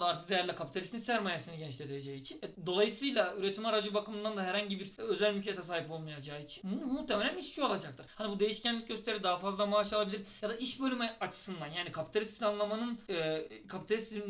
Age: 40-59